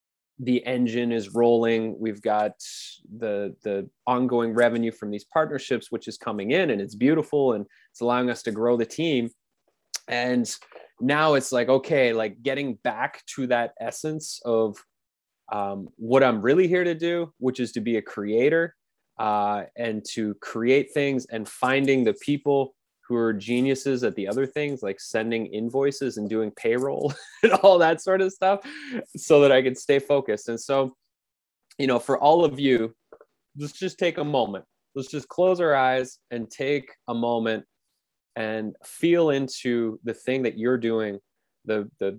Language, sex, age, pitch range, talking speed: English, male, 20-39, 110-135 Hz, 170 wpm